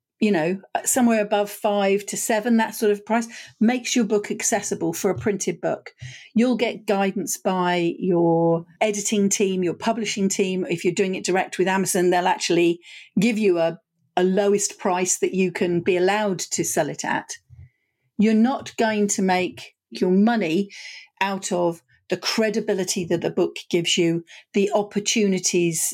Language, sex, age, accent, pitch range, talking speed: English, female, 50-69, British, 180-210 Hz, 165 wpm